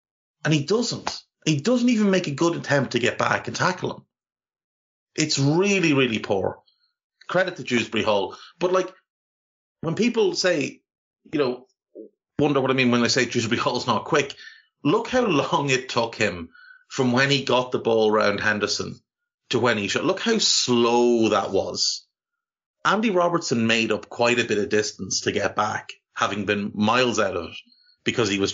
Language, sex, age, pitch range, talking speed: English, male, 30-49, 110-170 Hz, 180 wpm